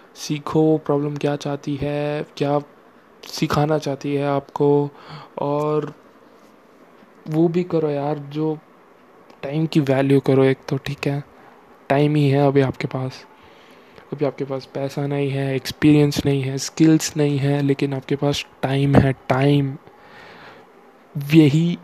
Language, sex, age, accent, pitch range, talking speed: Hindi, male, 20-39, native, 135-150 Hz, 135 wpm